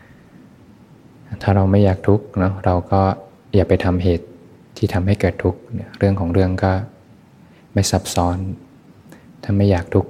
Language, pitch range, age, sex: Thai, 90-100 Hz, 20-39, male